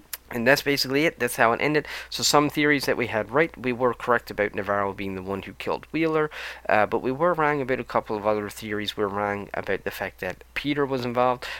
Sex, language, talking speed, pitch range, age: male, English, 245 wpm, 100-125 Hz, 10-29